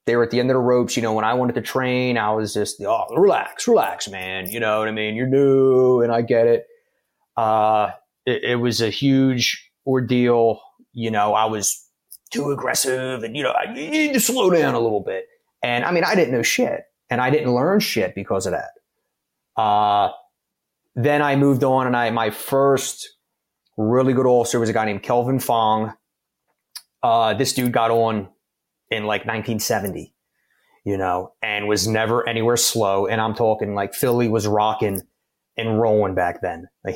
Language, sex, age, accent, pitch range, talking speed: English, male, 30-49, American, 105-130 Hz, 190 wpm